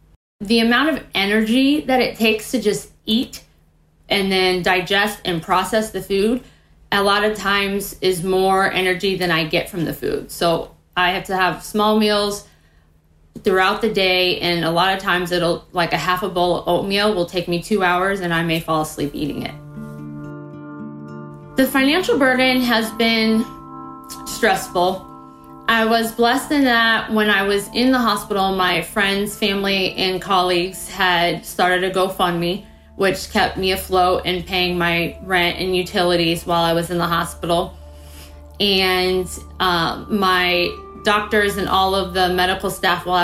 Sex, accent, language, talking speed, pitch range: female, American, English, 165 wpm, 170-200 Hz